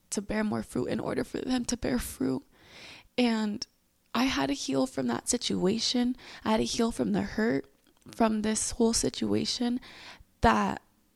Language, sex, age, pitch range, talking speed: English, female, 20-39, 190-235 Hz, 165 wpm